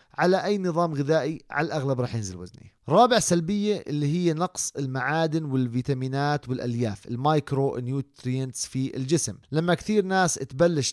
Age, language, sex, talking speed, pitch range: 30-49, Arabic, male, 135 wpm, 130-165 Hz